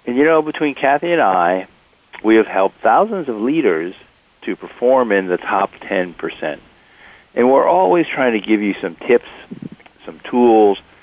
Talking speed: 165 wpm